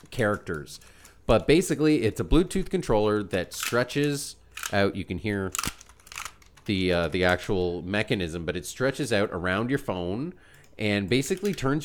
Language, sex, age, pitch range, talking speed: English, male, 30-49, 90-110 Hz, 140 wpm